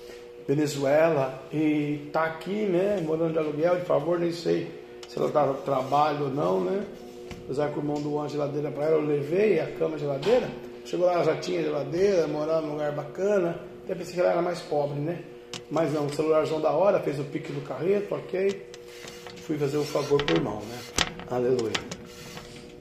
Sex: male